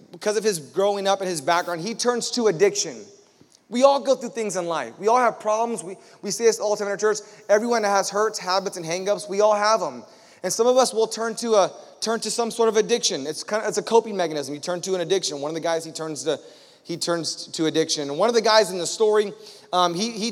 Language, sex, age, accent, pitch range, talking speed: English, male, 30-49, American, 180-230 Hz, 270 wpm